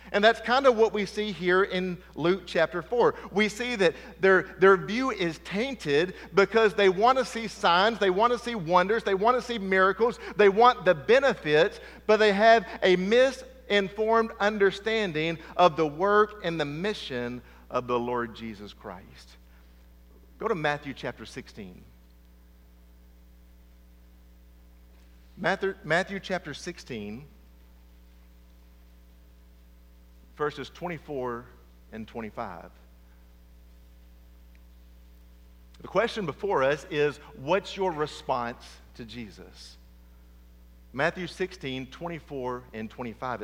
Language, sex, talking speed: English, male, 115 wpm